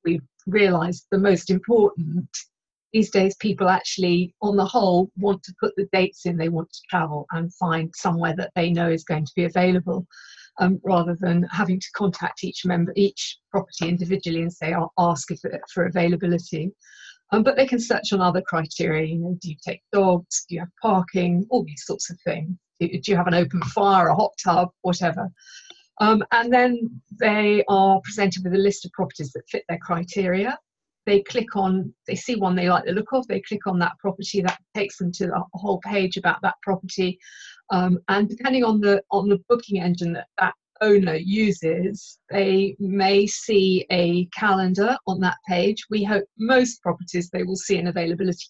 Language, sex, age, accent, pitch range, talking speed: English, female, 50-69, British, 175-200 Hz, 195 wpm